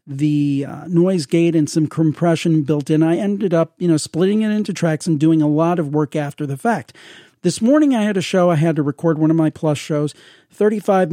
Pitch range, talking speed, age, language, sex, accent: 155-185 Hz, 235 wpm, 40-59, English, male, American